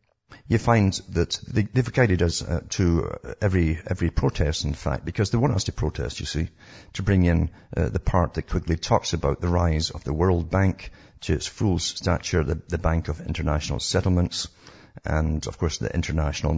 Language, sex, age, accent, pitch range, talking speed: English, male, 50-69, British, 80-100 Hz, 190 wpm